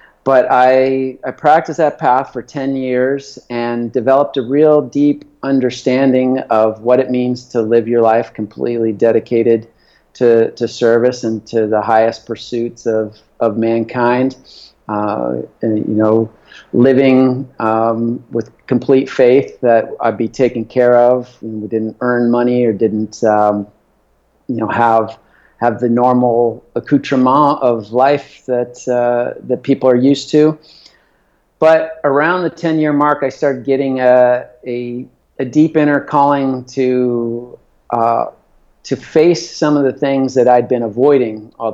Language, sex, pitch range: English, male, 115-135 Hz